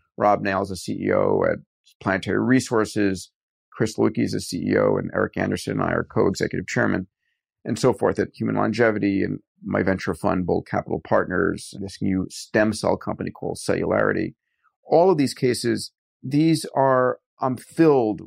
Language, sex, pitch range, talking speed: English, male, 105-125 Hz, 170 wpm